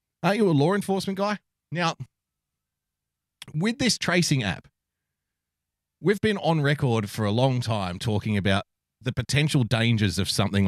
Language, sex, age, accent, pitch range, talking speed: English, male, 30-49, Australian, 90-130 Hz, 145 wpm